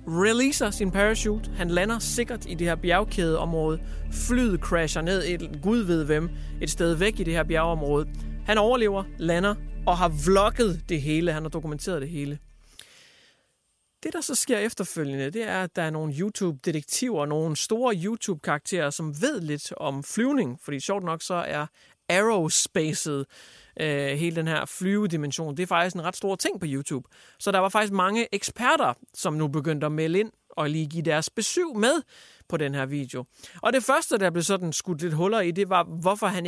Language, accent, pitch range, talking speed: English, Danish, 155-200 Hz, 190 wpm